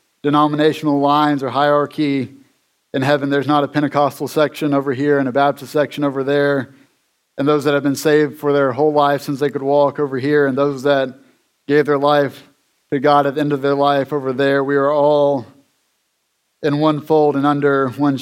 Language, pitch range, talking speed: English, 135-145 Hz, 200 wpm